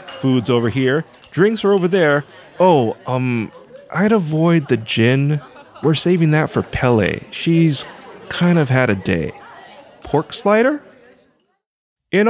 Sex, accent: male, American